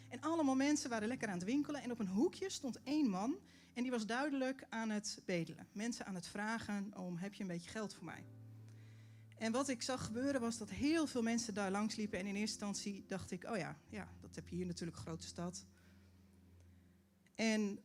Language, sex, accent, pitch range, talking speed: Dutch, female, Dutch, 165-225 Hz, 220 wpm